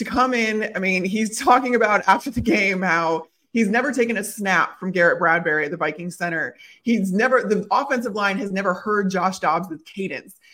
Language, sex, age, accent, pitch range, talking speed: English, female, 30-49, American, 185-245 Hz, 205 wpm